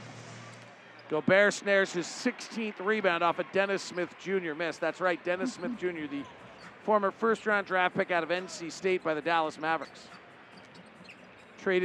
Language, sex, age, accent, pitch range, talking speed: English, male, 40-59, American, 175-215 Hz, 150 wpm